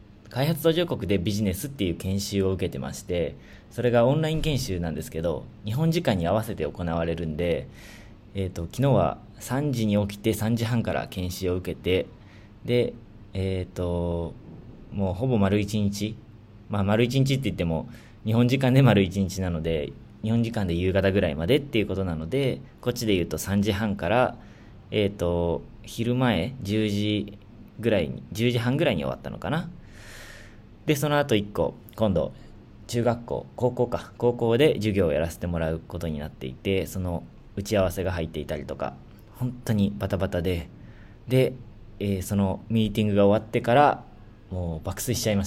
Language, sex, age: Japanese, male, 20-39